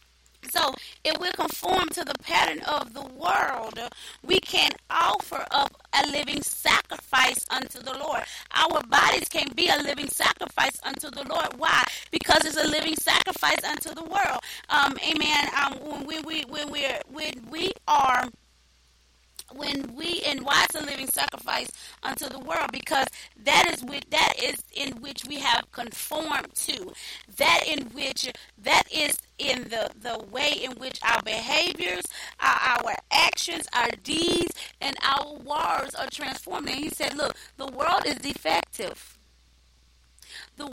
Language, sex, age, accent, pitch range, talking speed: English, female, 40-59, American, 215-310 Hz, 155 wpm